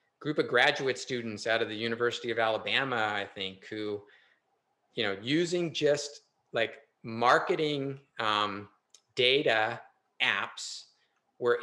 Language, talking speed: English, 120 wpm